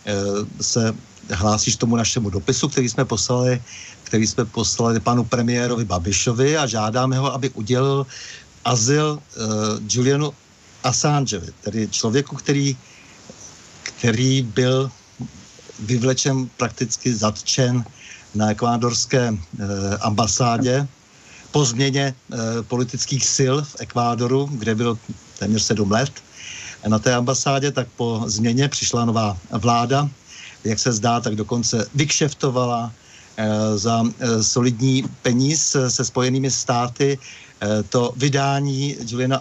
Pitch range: 110-135 Hz